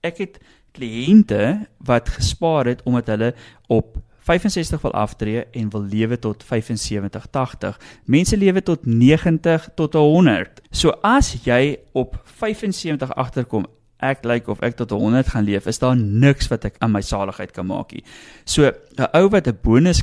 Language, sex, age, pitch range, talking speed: English, male, 30-49, 105-150 Hz, 160 wpm